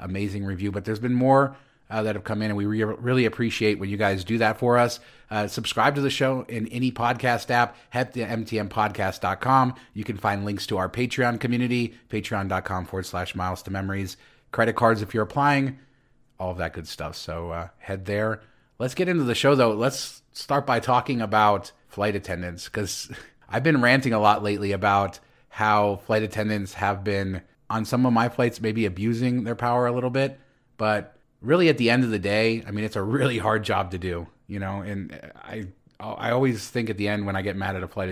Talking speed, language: 210 wpm, English